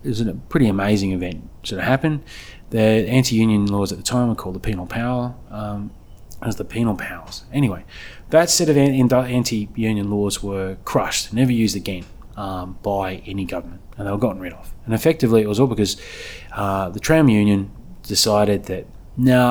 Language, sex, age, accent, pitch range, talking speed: English, male, 20-39, Australian, 95-125 Hz, 190 wpm